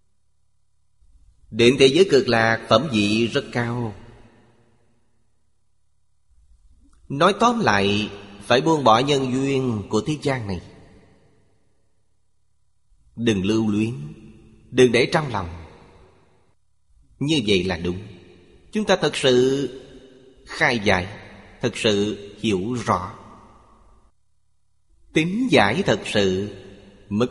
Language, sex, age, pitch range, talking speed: Vietnamese, male, 30-49, 100-120 Hz, 105 wpm